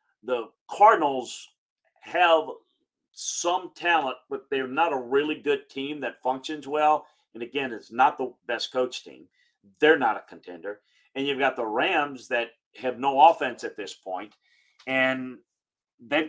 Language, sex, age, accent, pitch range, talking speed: English, male, 40-59, American, 110-140 Hz, 150 wpm